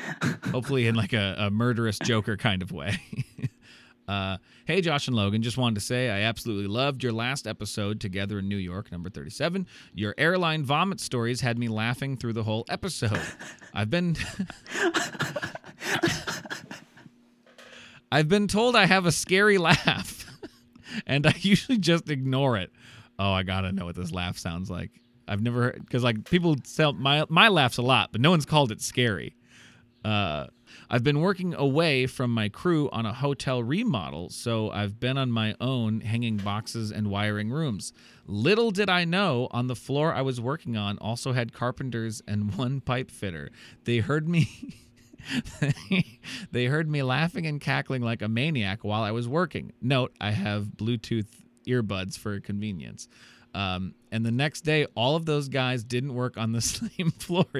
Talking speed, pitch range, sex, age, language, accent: 175 wpm, 105-150 Hz, male, 30-49, English, American